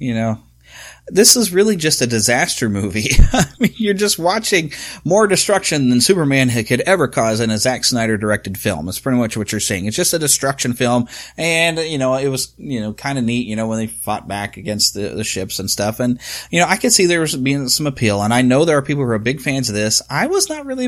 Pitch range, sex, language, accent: 110-165 Hz, male, English, American